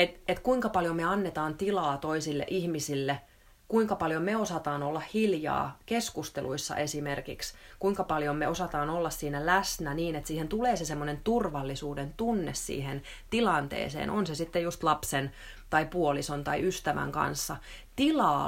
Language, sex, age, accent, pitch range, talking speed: Finnish, female, 30-49, native, 155-200 Hz, 145 wpm